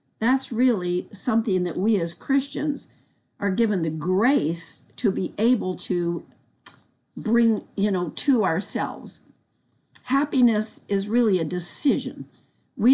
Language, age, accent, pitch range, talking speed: English, 50-69, American, 190-245 Hz, 120 wpm